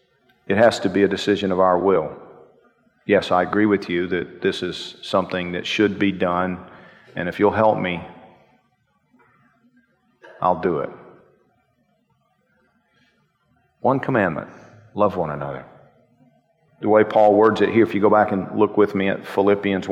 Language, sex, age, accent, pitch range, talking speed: English, male, 40-59, American, 95-105 Hz, 155 wpm